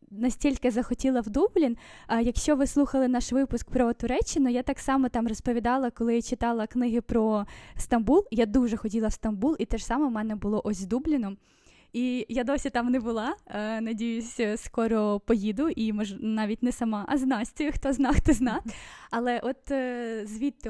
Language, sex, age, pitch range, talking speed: Ukrainian, female, 10-29, 225-260 Hz, 180 wpm